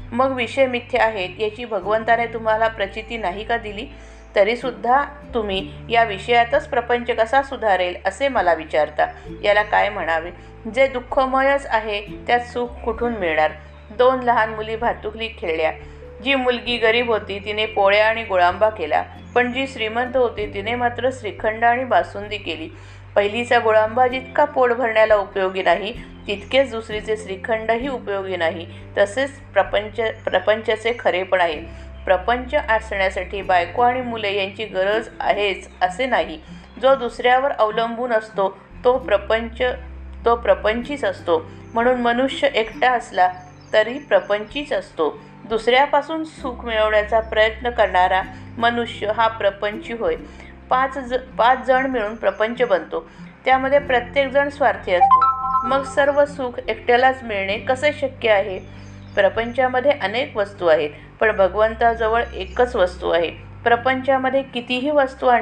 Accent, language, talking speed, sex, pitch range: native, Marathi, 120 wpm, female, 200-250 Hz